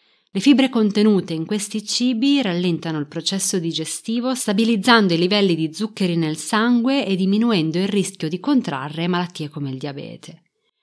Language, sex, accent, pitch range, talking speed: Italian, female, native, 165-230 Hz, 150 wpm